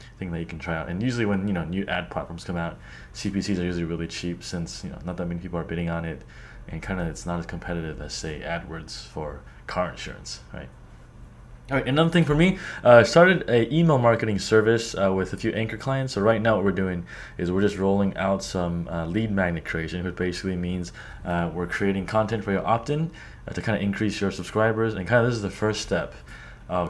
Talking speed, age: 240 wpm, 20-39